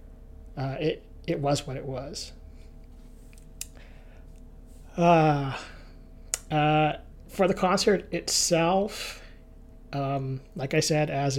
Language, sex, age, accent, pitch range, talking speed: English, male, 30-49, American, 130-145 Hz, 95 wpm